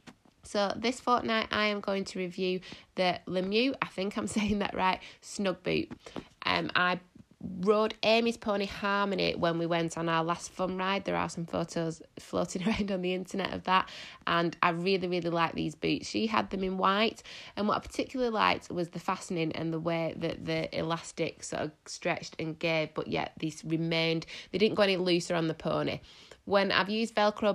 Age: 20-39